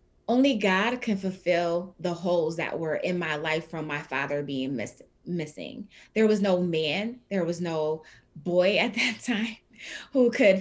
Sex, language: female, English